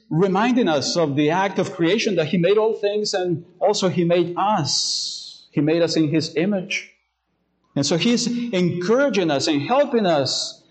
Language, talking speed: English, 175 wpm